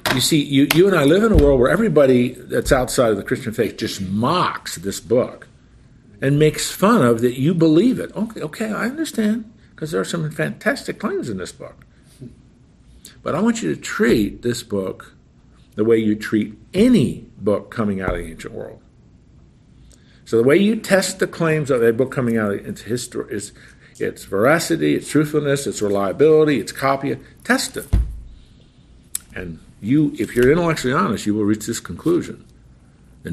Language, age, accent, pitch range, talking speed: English, 50-69, American, 100-155 Hz, 180 wpm